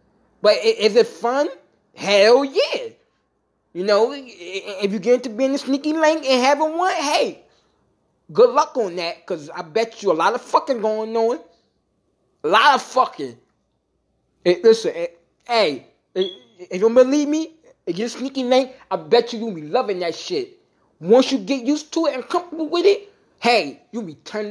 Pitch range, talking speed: 205-275 Hz, 175 wpm